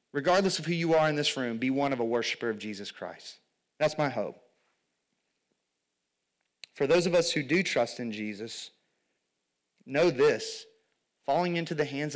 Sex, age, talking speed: male, 30-49, 170 wpm